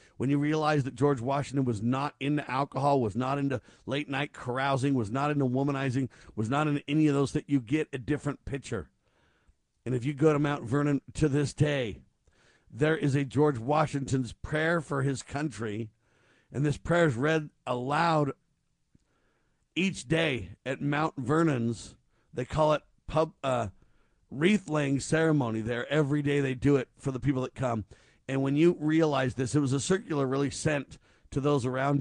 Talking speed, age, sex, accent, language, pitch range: 175 wpm, 50-69, male, American, English, 125-150 Hz